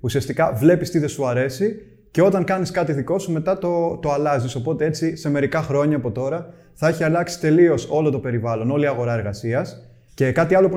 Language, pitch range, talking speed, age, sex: Greek, 125-170 Hz, 210 wpm, 20-39, male